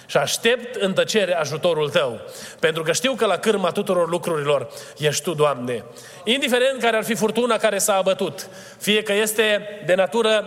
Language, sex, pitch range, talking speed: Romanian, male, 185-225 Hz, 170 wpm